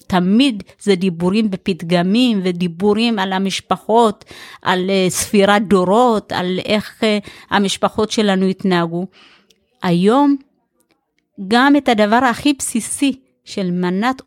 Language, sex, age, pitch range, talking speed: Hebrew, female, 30-49, 195-255 Hz, 95 wpm